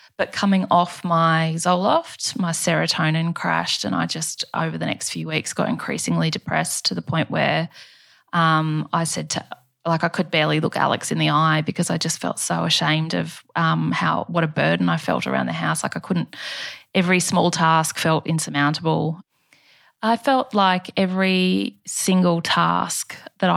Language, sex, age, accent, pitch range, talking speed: English, female, 20-39, Australian, 160-185 Hz, 175 wpm